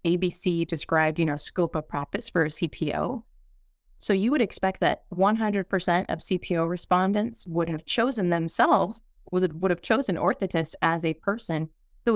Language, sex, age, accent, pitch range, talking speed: English, female, 20-39, American, 160-195 Hz, 160 wpm